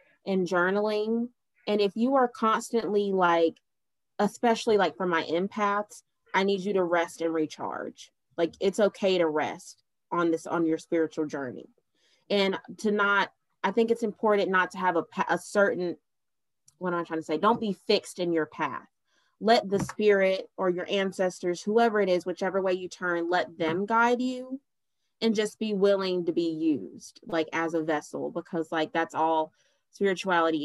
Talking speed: 170 wpm